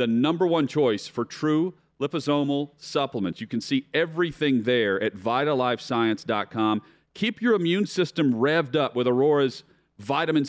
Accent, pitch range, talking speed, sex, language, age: American, 120-150 Hz, 135 wpm, male, English, 40-59